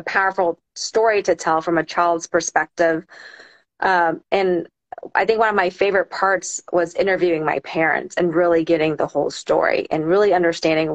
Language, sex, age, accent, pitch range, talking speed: English, female, 30-49, American, 165-190 Hz, 165 wpm